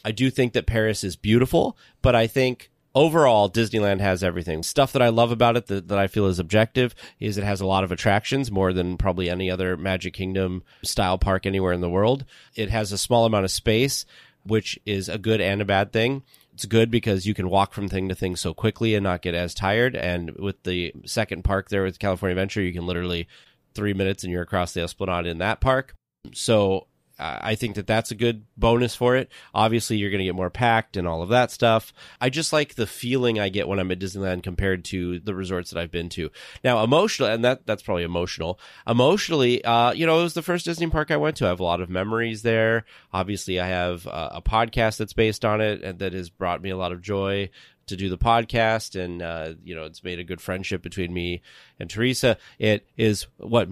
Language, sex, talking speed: English, male, 230 wpm